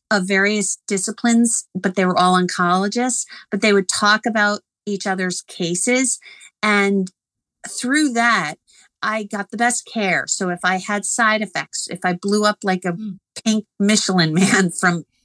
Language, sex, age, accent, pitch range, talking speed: English, female, 50-69, American, 185-230 Hz, 155 wpm